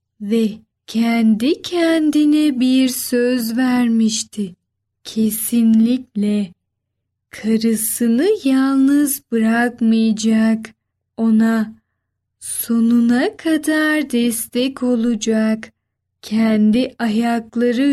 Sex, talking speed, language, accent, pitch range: female, 55 wpm, Turkish, native, 220-270 Hz